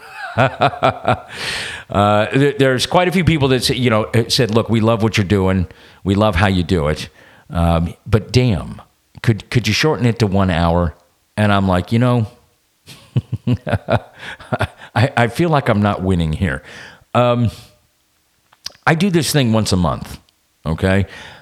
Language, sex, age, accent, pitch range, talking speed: English, male, 40-59, American, 95-120 Hz, 155 wpm